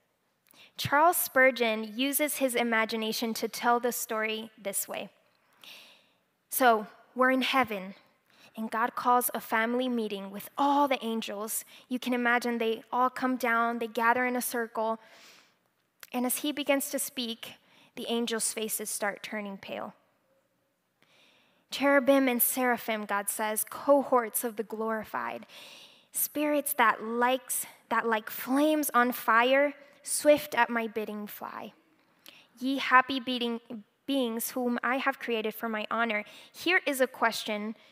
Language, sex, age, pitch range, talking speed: English, female, 10-29, 225-260 Hz, 135 wpm